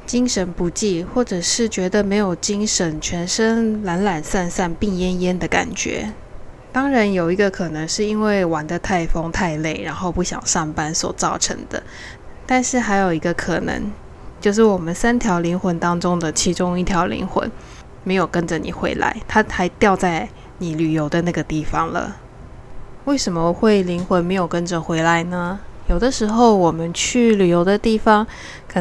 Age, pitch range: 10-29, 170-210 Hz